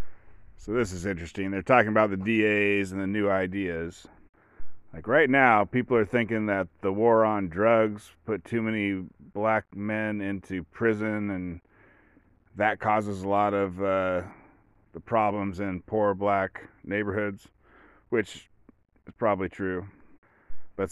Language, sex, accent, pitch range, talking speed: English, male, American, 95-110 Hz, 140 wpm